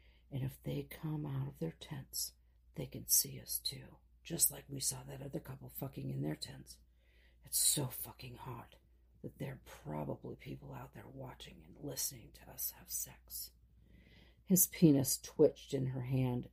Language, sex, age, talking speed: English, female, 50-69, 175 wpm